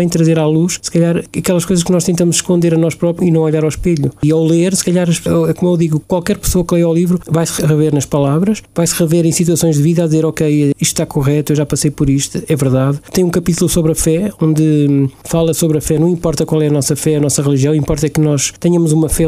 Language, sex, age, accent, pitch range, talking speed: Portuguese, male, 20-39, Portuguese, 145-165 Hz, 260 wpm